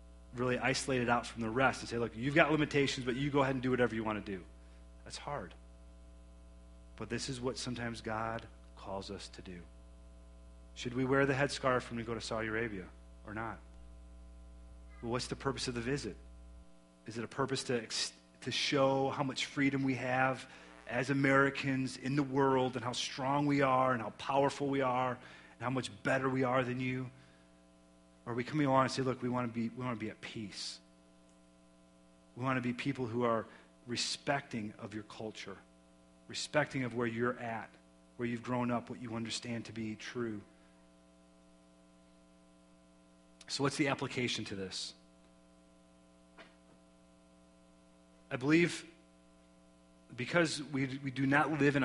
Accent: American